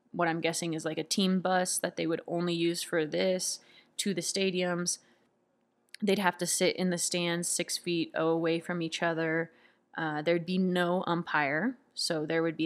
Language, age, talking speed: English, 20-39, 190 wpm